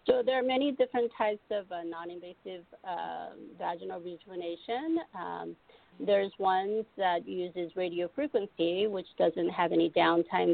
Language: English